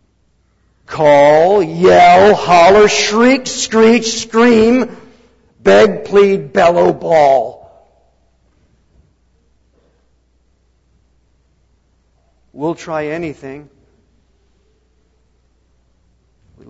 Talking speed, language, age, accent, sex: 50 wpm, English, 50-69, American, male